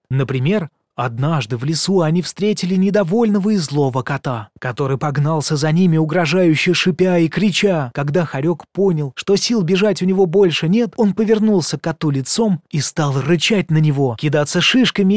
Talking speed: 160 wpm